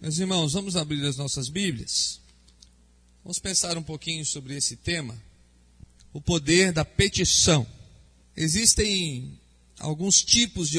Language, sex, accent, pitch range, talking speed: Portuguese, male, Brazilian, 160-205 Hz, 120 wpm